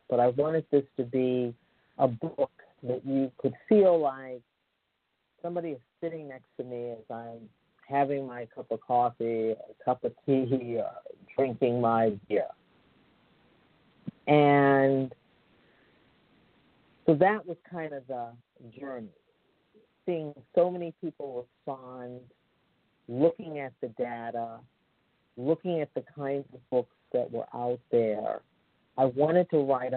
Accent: American